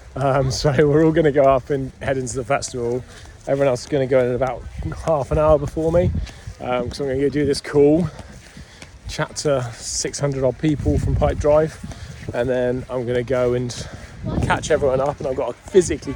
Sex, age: male, 30-49